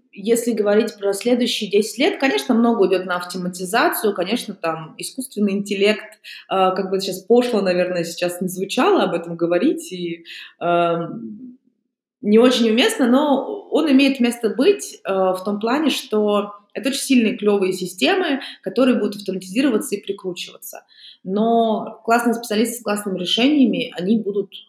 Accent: native